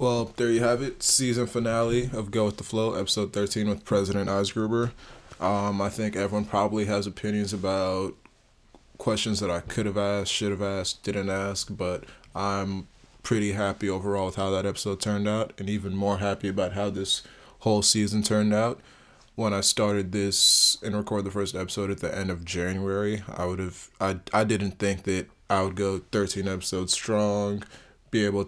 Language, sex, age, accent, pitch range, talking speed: English, male, 20-39, American, 95-105 Hz, 180 wpm